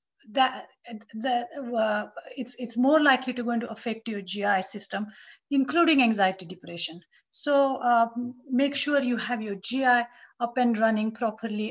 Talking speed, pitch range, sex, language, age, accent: 150 wpm, 215-260 Hz, female, English, 50-69, Indian